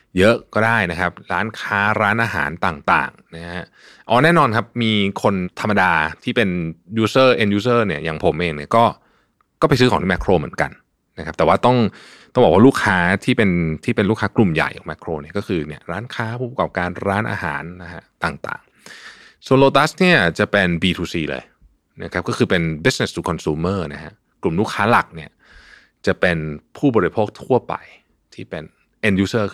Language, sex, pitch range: Thai, male, 85-115 Hz